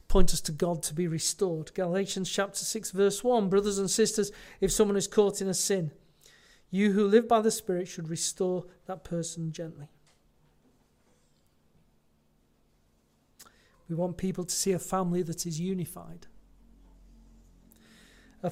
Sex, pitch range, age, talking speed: male, 175-225 Hz, 40-59, 145 wpm